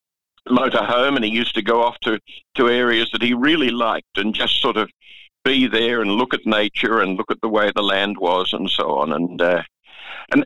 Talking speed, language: 225 wpm, English